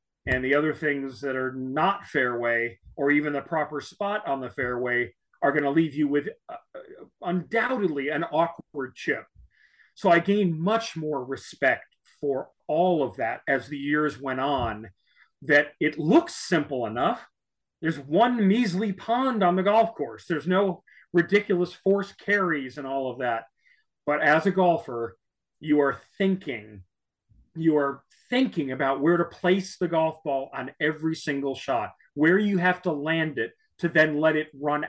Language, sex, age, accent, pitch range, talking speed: English, male, 40-59, American, 135-180 Hz, 165 wpm